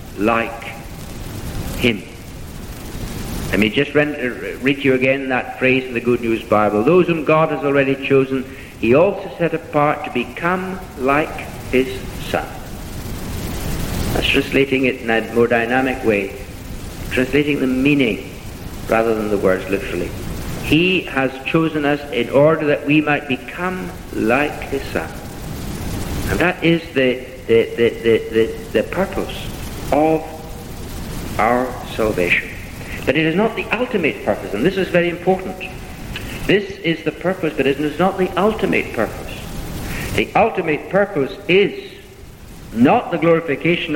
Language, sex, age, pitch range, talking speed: English, male, 60-79, 115-165 Hz, 140 wpm